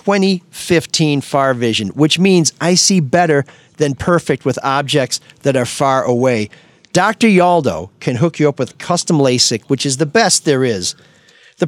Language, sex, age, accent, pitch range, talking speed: English, male, 40-59, American, 125-175 Hz, 165 wpm